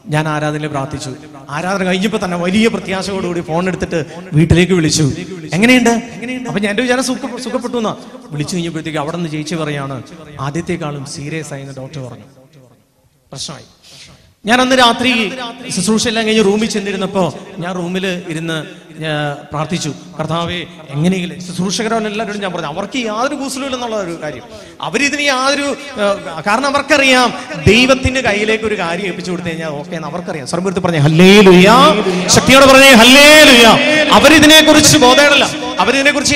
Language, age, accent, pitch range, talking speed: Malayalam, 30-49, native, 160-225 Hz, 110 wpm